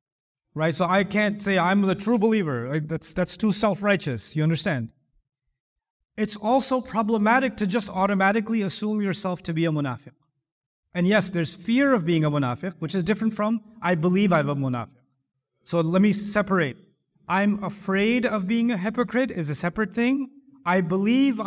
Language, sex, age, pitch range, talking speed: English, male, 30-49, 160-225 Hz, 170 wpm